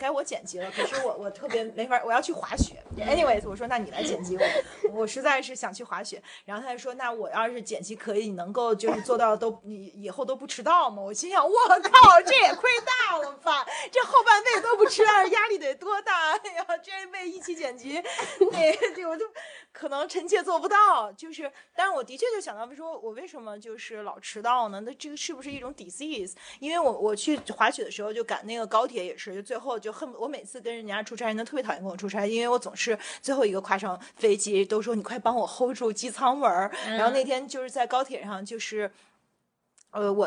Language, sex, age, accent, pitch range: Chinese, female, 30-49, native, 215-320 Hz